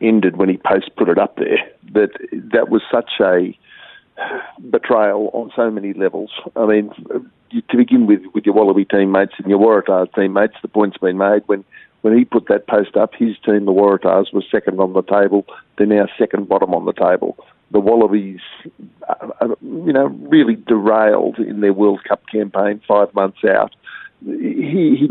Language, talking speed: English, 175 wpm